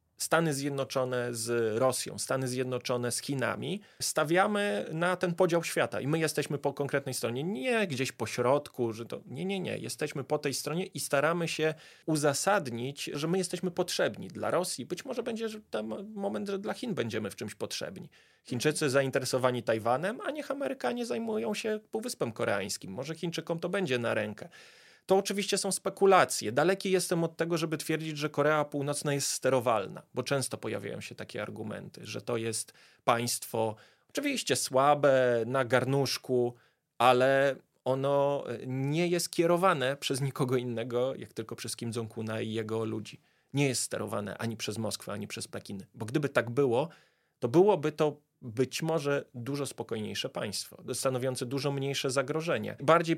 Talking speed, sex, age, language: 160 wpm, male, 30-49, Polish